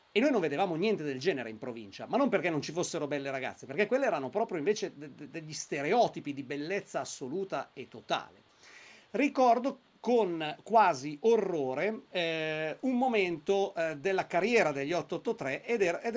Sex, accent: male, native